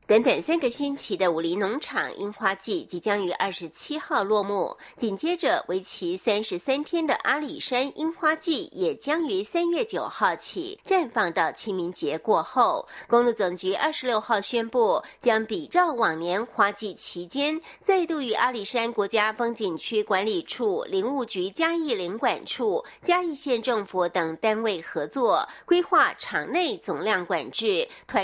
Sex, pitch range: female, 210-340 Hz